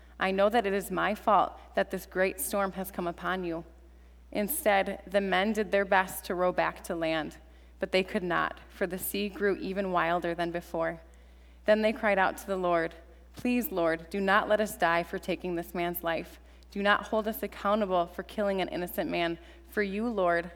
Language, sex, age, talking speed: English, female, 20-39, 205 wpm